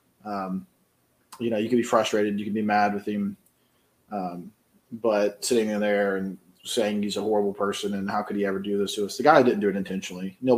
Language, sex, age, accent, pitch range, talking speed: English, male, 20-39, American, 100-115 Hz, 225 wpm